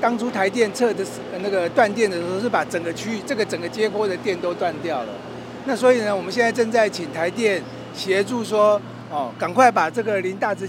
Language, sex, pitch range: Chinese, male, 190-240 Hz